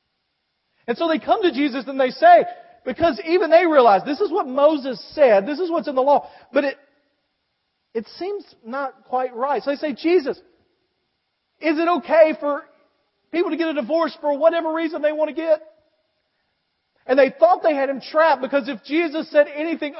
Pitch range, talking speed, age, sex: 180-295 Hz, 190 wpm, 40-59, male